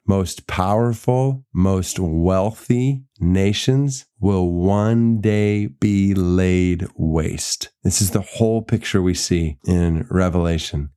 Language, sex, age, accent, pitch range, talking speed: English, male, 40-59, American, 85-110 Hz, 110 wpm